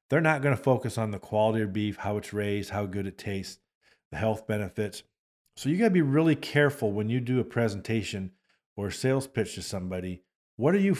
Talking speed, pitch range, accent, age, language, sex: 225 wpm, 100-125 Hz, American, 50-69, English, male